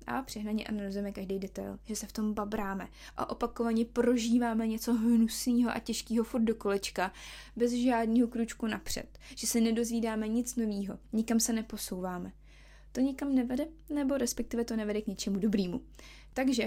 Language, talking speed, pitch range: Czech, 155 wpm, 210-240 Hz